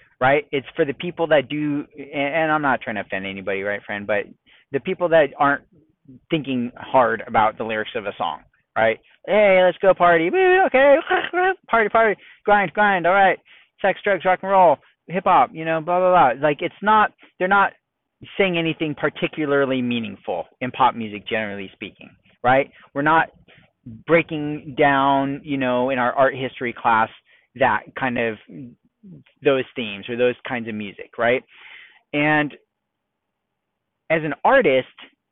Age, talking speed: 30-49, 160 wpm